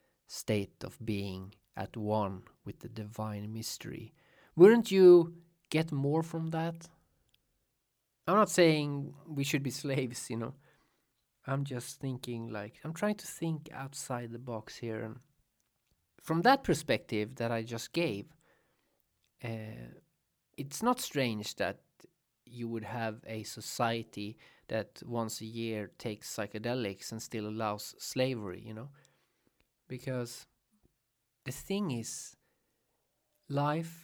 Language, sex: English, male